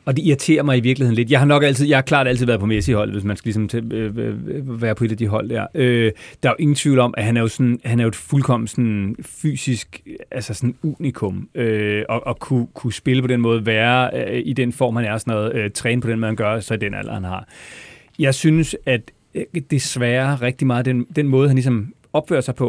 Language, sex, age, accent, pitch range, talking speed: Danish, male, 30-49, native, 115-140 Hz, 255 wpm